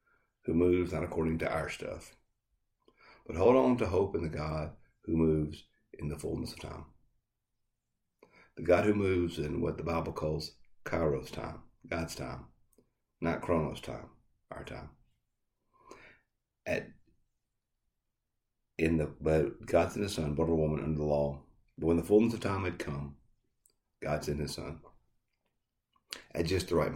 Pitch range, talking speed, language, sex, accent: 75-90 Hz, 155 wpm, English, male, American